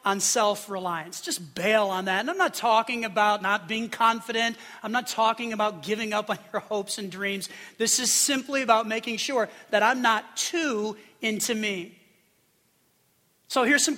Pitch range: 205-255 Hz